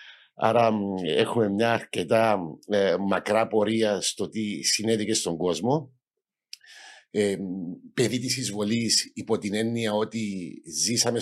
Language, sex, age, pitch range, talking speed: Greek, male, 50-69, 105-130 Hz, 110 wpm